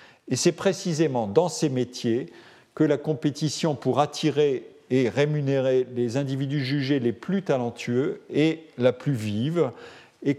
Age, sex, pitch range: 50-69, male, 115-155 Hz